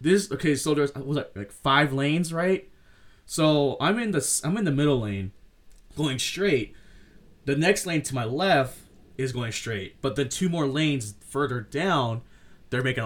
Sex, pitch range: male, 120-180 Hz